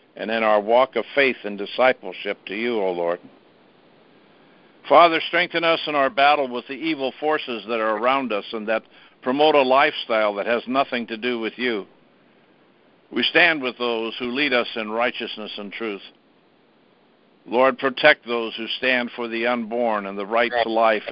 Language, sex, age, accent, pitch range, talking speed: English, male, 60-79, American, 115-135 Hz, 175 wpm